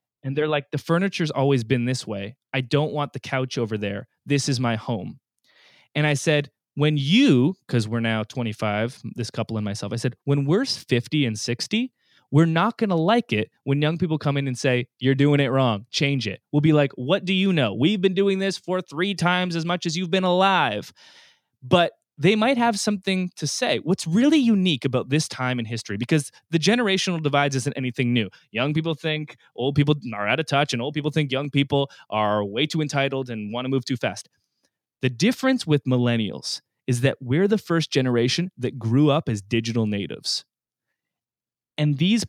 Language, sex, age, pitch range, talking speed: English, male, 20-39, 125-170 Hz, 205 wpm